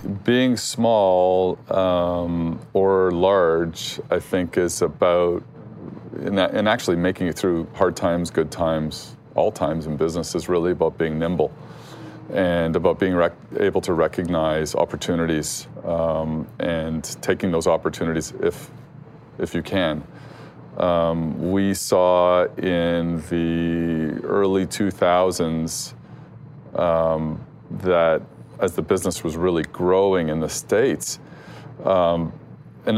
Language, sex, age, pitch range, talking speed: English, male, 40-59, 80-95 Hz, 115 wpm